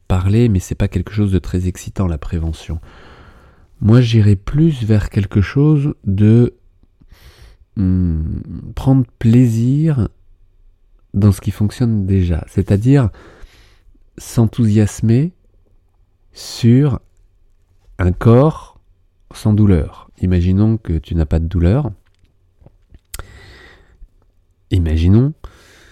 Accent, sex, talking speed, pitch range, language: French, male, 95 wpm, 90-110 Hz, French